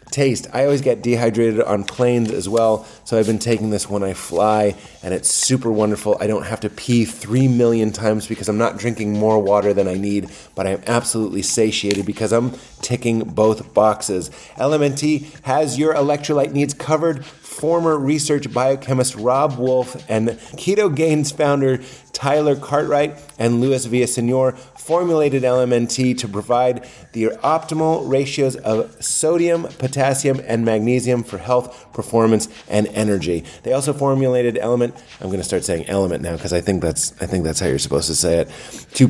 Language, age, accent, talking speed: English, 30-49, American, 160 wpm